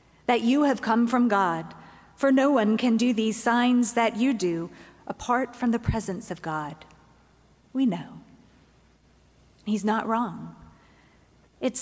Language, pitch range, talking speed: English, 195-235 Hz, 140 wpm